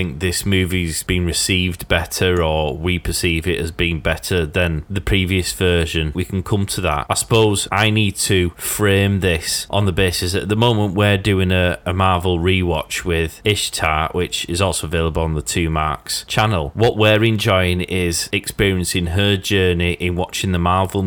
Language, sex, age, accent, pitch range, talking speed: English, male, 30-49, British, 85-100 Hz, 180 wpm